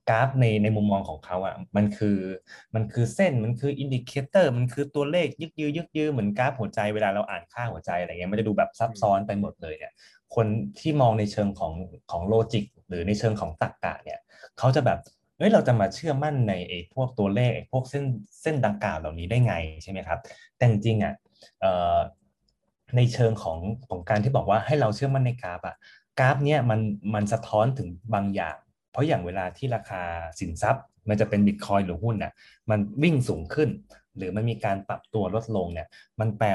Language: Thai